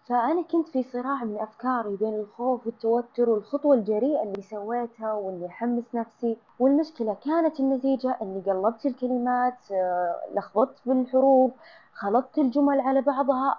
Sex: female